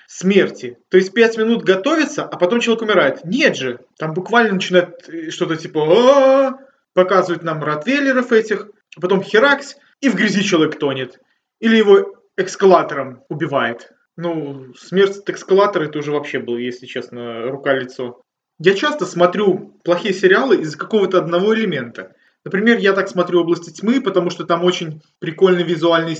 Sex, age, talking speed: male, 20-39, 150 wpm